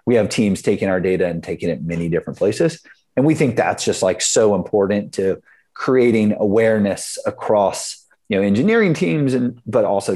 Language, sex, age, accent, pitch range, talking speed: English, male, 30-49, American, 90-125 Hz, 185 wpm